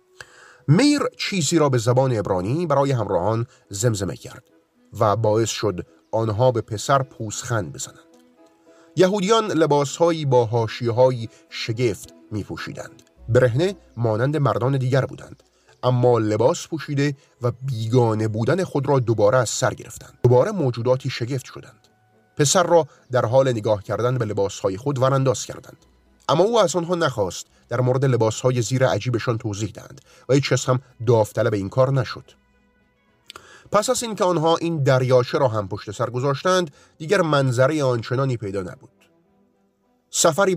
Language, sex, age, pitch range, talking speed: Persian, male, 30-49, 115-145 Hz, 135 wpm